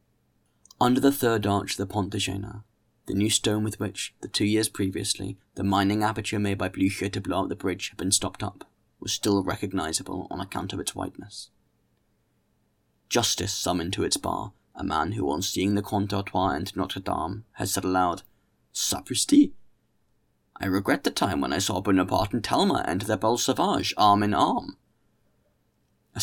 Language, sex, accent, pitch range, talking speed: English, male, British, 95-105 Hz, 180 wpm